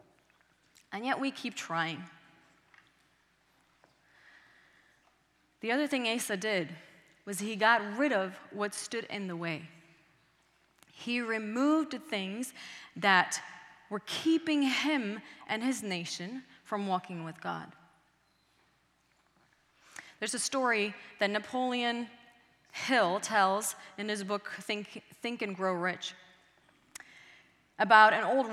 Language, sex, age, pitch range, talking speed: English, female, 30-49, 190-265 Hz, 110 wpm